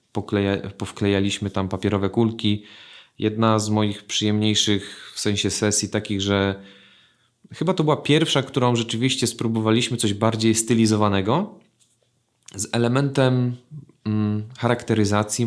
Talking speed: 100 wpm